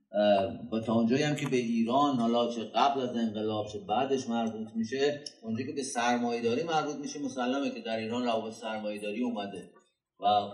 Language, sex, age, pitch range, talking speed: Persian, male, 30-49, 105-130 Hz, 170 wpm